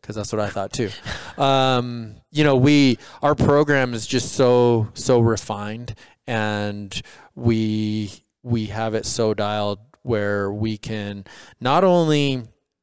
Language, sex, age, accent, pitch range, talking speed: English, male, 20-39, American, 110-130 Hz, 135 wpm